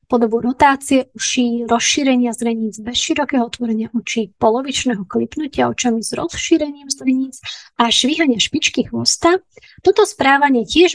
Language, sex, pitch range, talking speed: Slovak, female, 230-295 Hz, 120 wpm